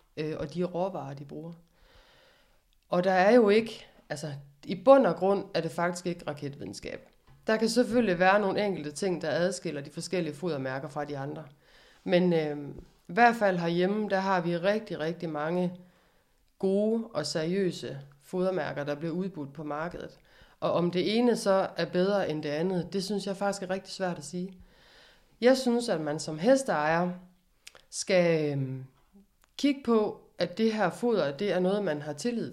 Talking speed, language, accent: 170 wpm, Danish, native